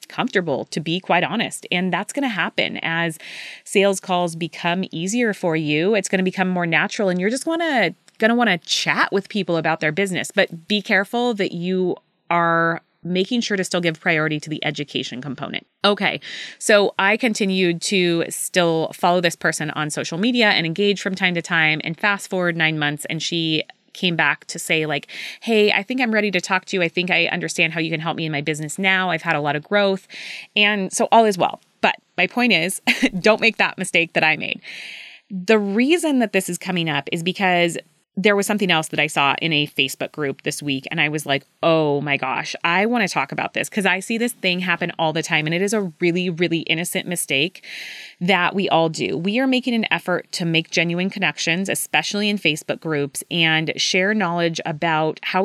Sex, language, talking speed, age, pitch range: female, English, 215 wpm, 20-39, 165-205 Hz